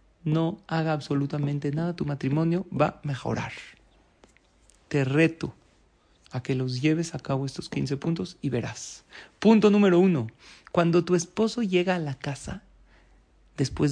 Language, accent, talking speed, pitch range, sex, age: Spanish, Mexican, 140 wpm, 140-175 Hz, male, 40-59